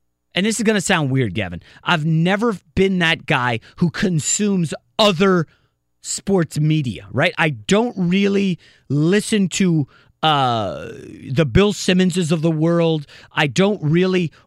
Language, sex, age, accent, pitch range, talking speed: English, male, 30-49, American, 150-205 Hz, 140 wpm